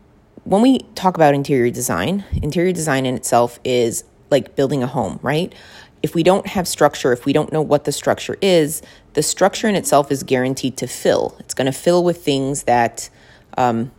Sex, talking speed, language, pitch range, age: female, 195 wpm, English, 125-155 Hz, 30-49